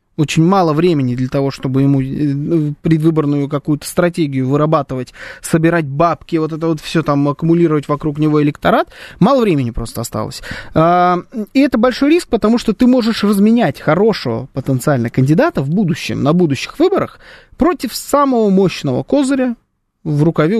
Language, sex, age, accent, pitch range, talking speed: Russian, male, 20-39, native, 145-205 Hz, 145 wpm